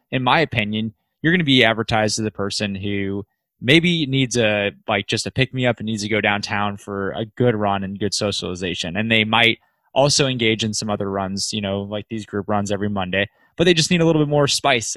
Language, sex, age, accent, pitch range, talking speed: English, male, 20-39, American, 100-125 Hz, 235 wpm